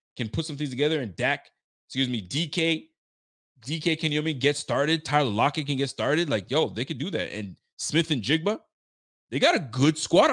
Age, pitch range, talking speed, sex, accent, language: 20-39, 110-150 Hz, 205 wpm, male, American, English